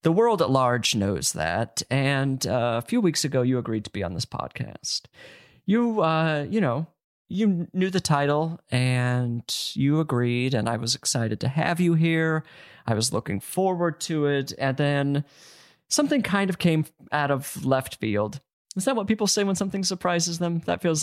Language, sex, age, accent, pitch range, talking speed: English, male, 30-49, American, 125-175 Hz, 185 wpm